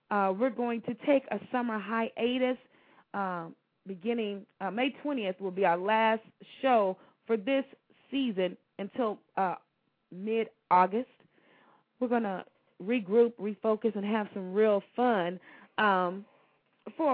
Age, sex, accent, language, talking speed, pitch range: 30-49, female, American, English, 125 wpm, 175-230 Hz